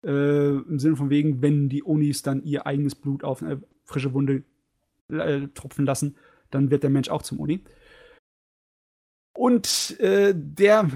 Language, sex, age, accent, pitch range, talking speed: German, male, 30-49, German, 140-165 Hz, 165 wpm